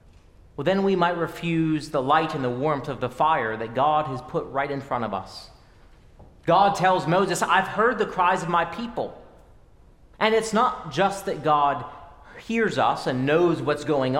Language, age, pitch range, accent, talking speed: English, 30-49, 140-180 Hz, American, 185 wpm